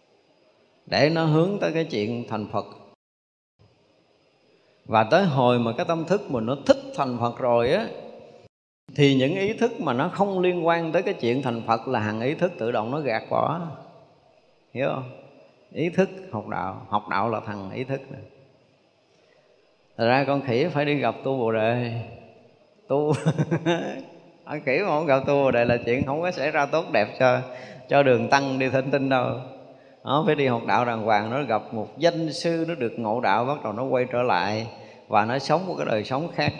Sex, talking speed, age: male, 200 wpm, 20-39